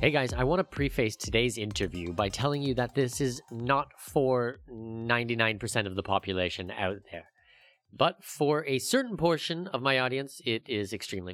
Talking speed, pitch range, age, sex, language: 175 wpm, 105-145 Hz, 30-49, male, English